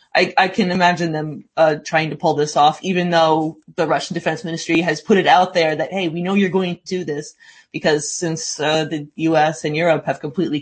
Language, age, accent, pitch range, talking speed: English, 20-39, American, 150-175 Hz, 225 wpm